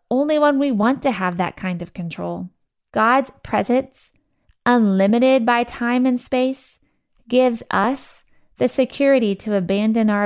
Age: 20-39